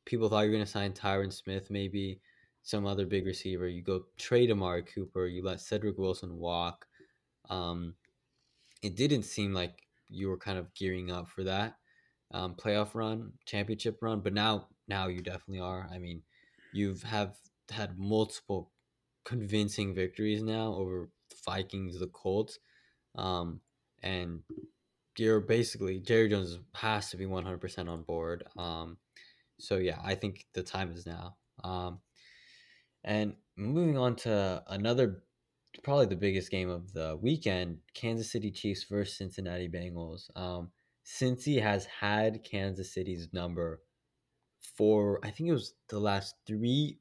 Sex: male